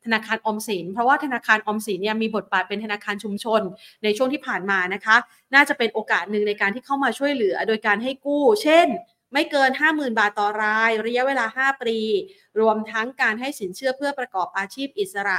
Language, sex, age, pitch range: Thai, female, 30-49, 205-270 Hz